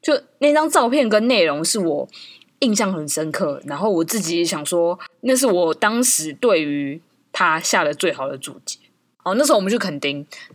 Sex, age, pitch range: female, 20-39, 155-210 Hz